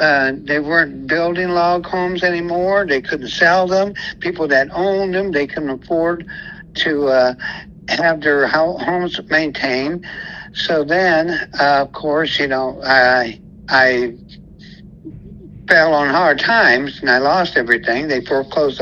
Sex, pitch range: male, 135-170 Hz